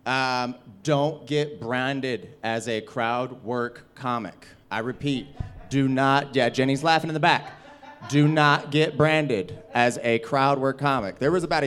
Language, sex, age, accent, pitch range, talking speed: English, male, 30-49, American, 120-145 Hz, 160 wpm